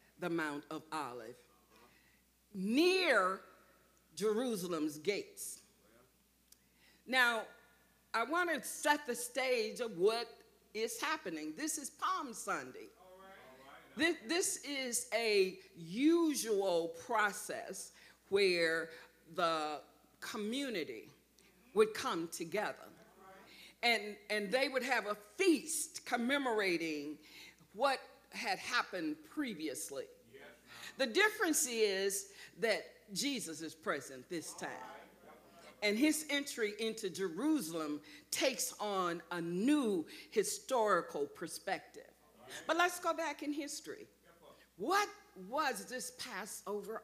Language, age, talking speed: English, 50-69, 95 wpm